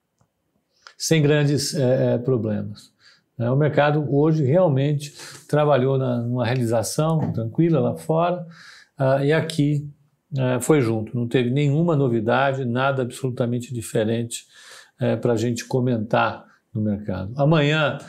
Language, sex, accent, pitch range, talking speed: Portuguese, male, Brazilian, 130-165 Hz, 105 wpm